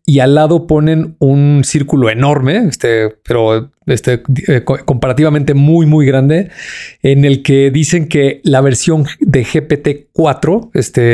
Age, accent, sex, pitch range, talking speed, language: 40-59, Mexican, male, 135-160 Hz, 135 wpm, Spanish